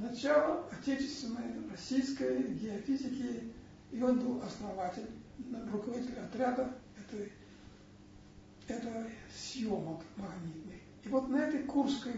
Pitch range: 210-260 Hz